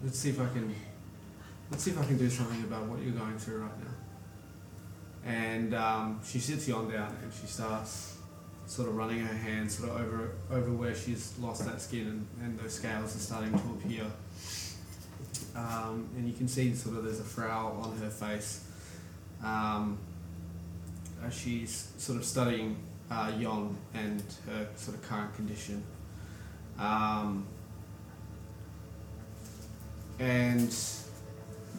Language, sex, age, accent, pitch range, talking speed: English, male, 20-39, Australian, 105-115 Hz, 150 wpm